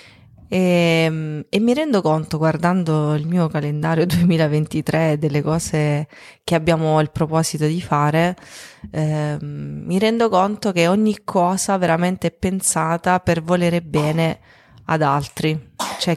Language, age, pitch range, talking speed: Italian, 20-39, 155-185 Hz, 130 wpm